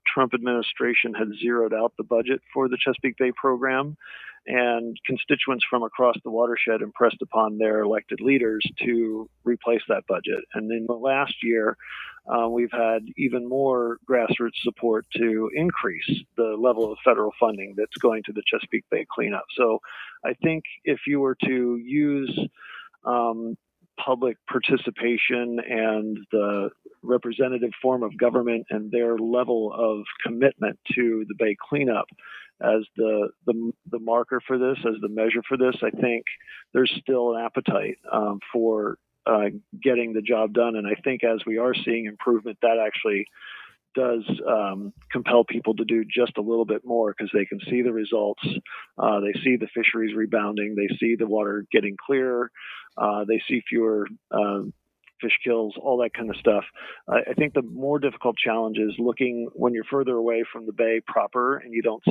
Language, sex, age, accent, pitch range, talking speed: English, male, 50-69, American, 110-125 Hz, 170 wpm